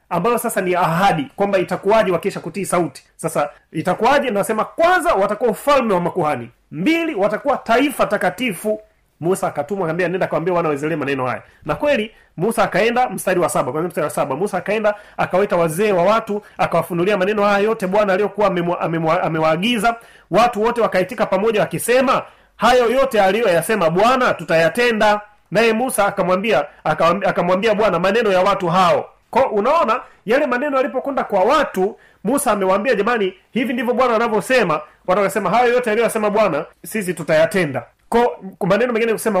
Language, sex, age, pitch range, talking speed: Swahili, male, 30-49, 180-230 Hz, 150 wpm